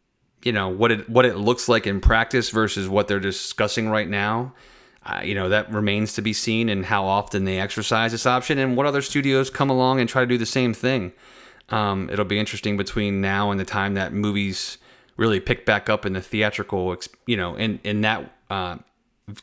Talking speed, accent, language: 210 wpm, American, English